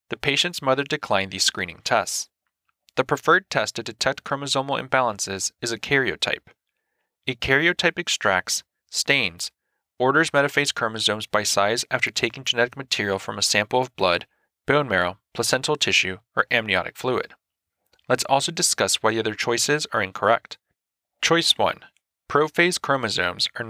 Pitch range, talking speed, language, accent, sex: 110-145 Hz, 140 wpm, English, American, male